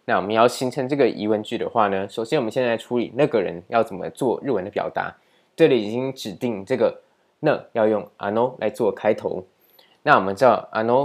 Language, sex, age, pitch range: Chinese, male, 20-39, 105-140 Hz